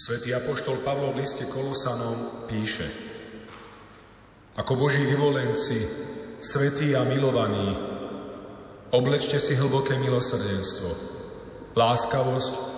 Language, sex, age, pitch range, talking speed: Slovak, male, 40-59, 115-140 Hz, 85 wpm